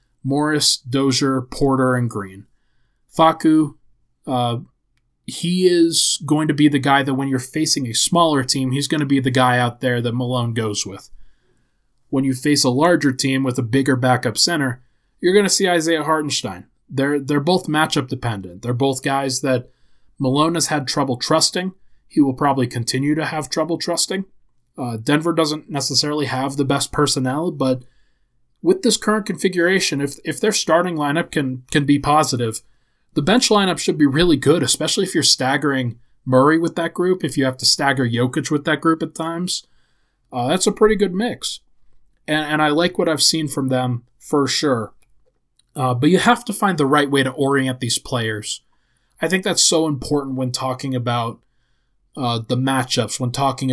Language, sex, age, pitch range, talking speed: English, male, 20-39, 125-155 Hz, 180 wpm